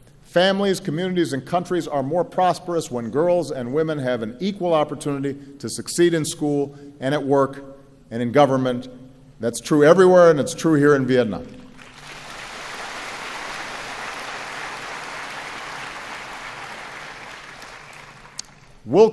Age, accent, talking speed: 50-69, American, 110 wpm